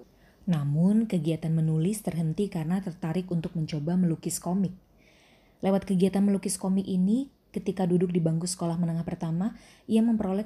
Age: 20-39